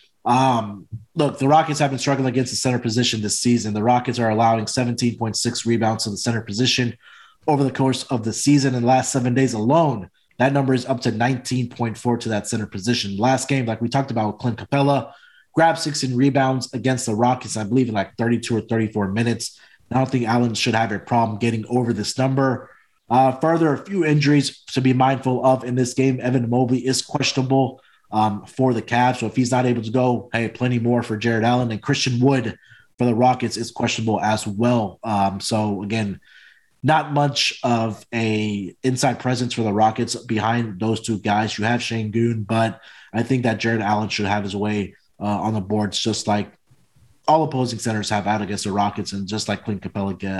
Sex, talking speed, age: male, 205 wpm, 30-49